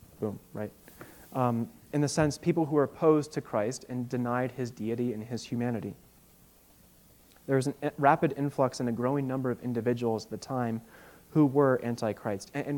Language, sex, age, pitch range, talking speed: English, male, 30-49, 115-145 Hz, 180 wpm